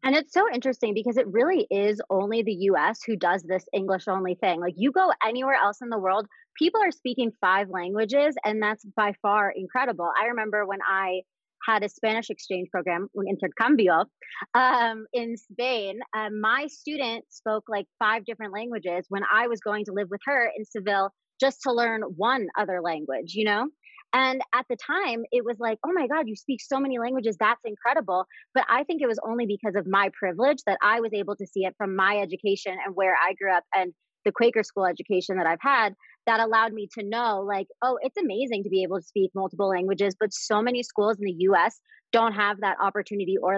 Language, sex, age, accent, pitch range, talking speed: English, female, 30-49, American, 195-240 Hz, 205 wpm